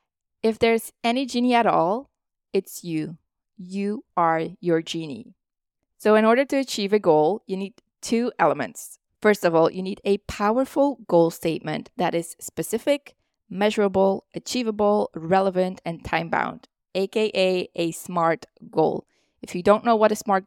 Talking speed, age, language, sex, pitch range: 150 wpm, 20-39, English, female, 180-225 Hz